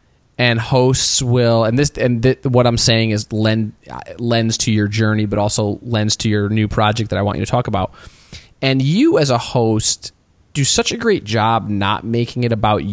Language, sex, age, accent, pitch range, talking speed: English, male, 20-39, American, 105-125 Hz, 205 wpm